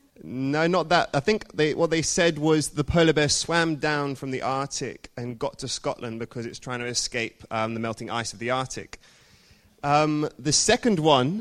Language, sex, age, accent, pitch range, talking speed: English, male, 20-39, British, 140-180 Hz, 200 wpm